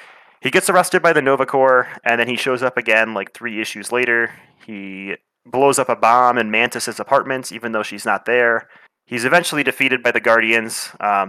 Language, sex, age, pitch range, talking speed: English, male, 20-39, 105-125 Hz, 195 wpm